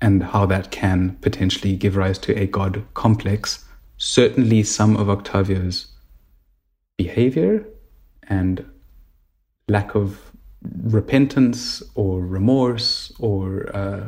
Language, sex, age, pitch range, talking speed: English, male, 30-49, 95-110 Hz, 100 wpm